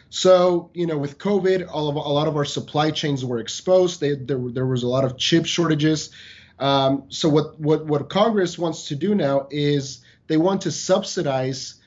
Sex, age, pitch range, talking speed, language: male, 30-49, 140-180 Hz, 195 wpm, English